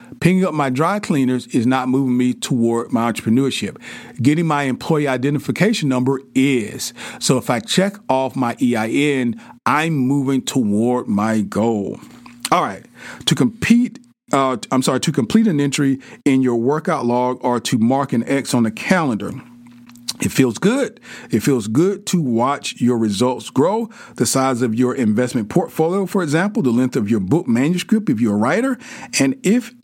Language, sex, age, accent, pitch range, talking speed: English, male, 40-59, American, 125-175 Hz, 170 wpm